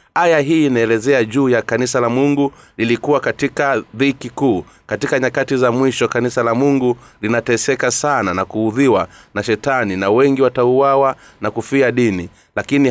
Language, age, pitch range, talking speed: Swahili, 30-49, 115-135 Hz, 150 wpm